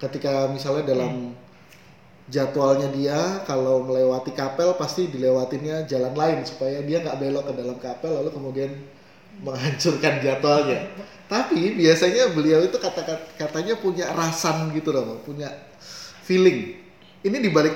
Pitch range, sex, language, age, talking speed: 130-160 Hz, male, Indonesian, 20-39, 125 wpm